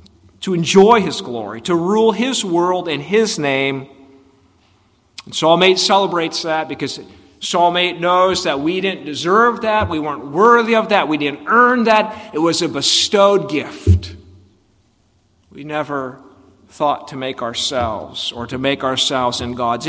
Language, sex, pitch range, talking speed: English, male, 130-190 Hz, 155 wpm